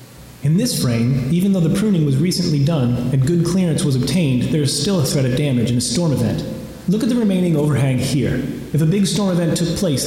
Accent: American